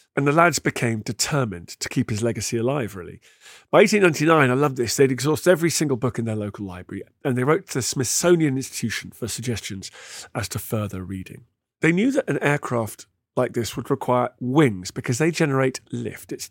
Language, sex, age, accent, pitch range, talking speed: English, male, 40-59, British, 115-155 Hz, 195 wpm